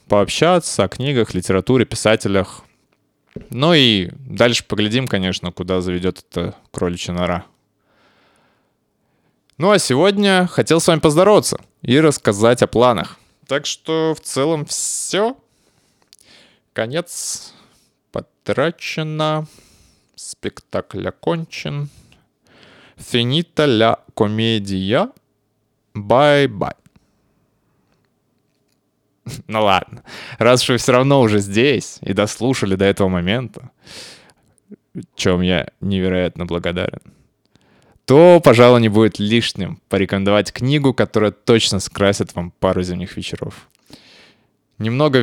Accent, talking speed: native, 95 wpm